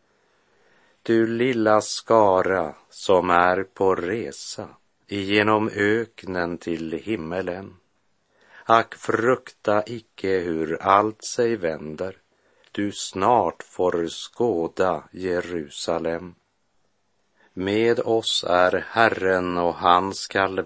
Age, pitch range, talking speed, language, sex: 50-69, 85-105 Hz, 85 wpm, Swedish, male